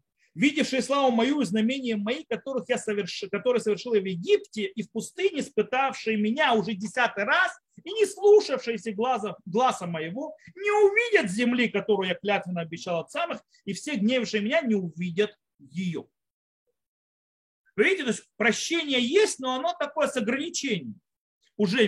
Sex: male